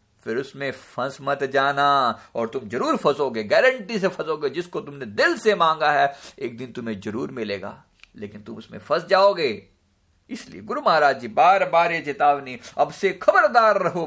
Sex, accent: male, native